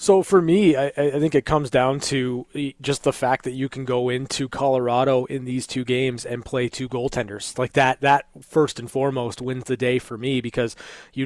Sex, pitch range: male, 125-140 Hz